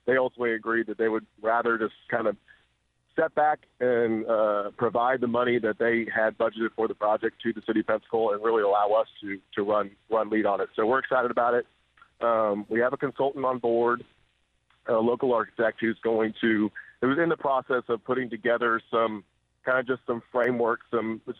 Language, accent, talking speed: English, American, 210 wpm